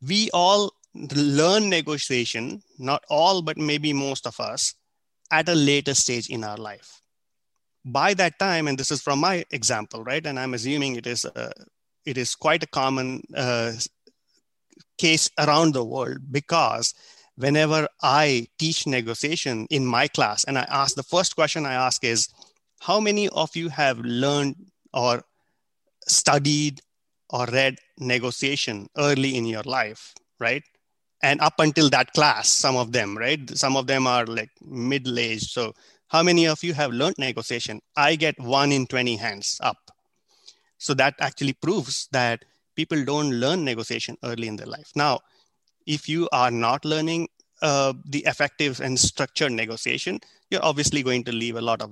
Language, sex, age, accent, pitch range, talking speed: English, male, 30-49, Indian, 125-155 Hz, 160 wpm